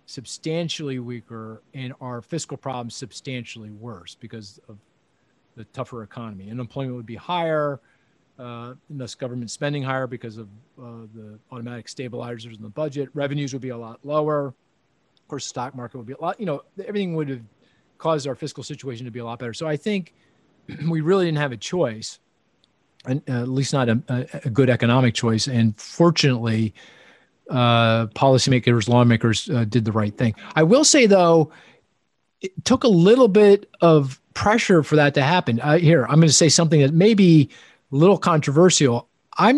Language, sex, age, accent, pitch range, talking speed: English, male, 40-59, American, 120-155 Hz, 180 wpm